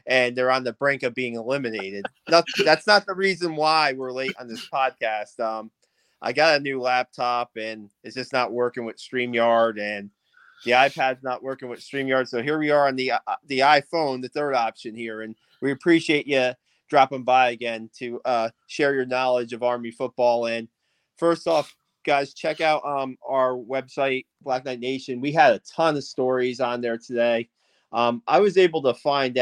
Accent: American